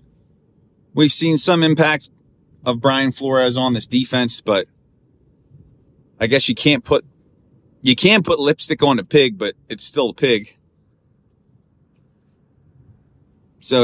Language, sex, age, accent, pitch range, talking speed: English, male, 30-49, American, 120-145 Hz, 125 wpm